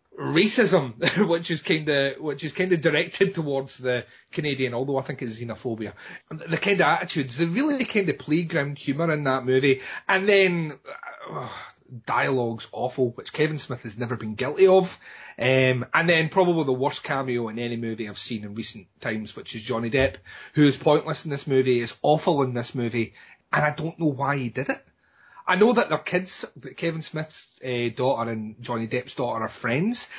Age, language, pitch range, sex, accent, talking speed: 30-49, English, 120-160 Hz, male, British, 190 wpm